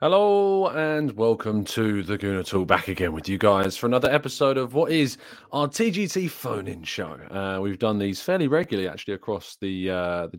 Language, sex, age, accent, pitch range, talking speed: English, male, 30-49, British, 100-130 Hz, 185 wpm